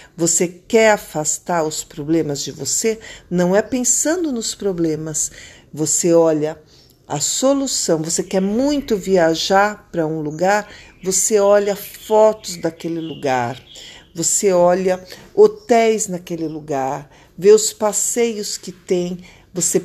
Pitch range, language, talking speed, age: 170-235 Hz, Portuguese, 120 wpm, 50-69